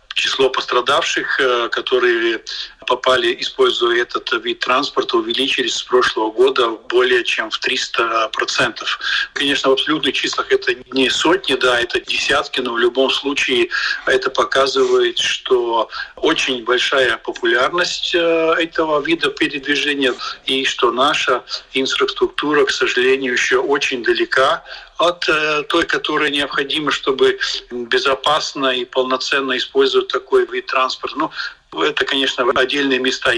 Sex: male